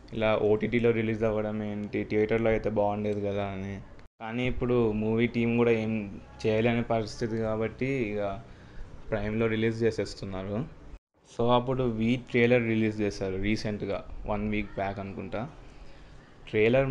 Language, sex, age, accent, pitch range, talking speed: Telugu, male, 20-39, native, 105-120 Hz, 125 wpm